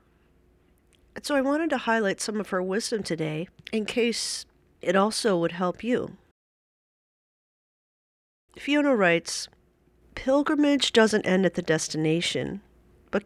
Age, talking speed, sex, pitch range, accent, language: 40-59, 120 wpm, female, 170-230 Hz, American, English